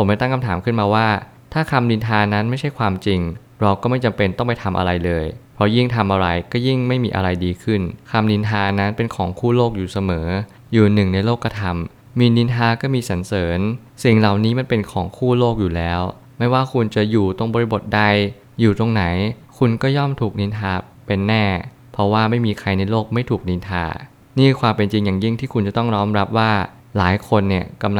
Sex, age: male, 20-39